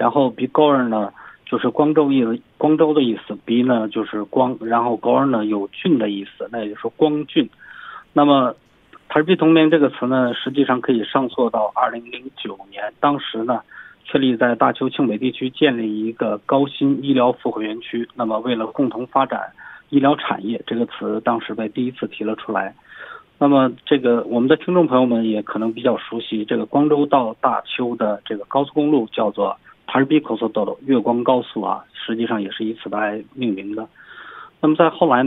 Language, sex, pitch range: Korean, male, 110-140 Hz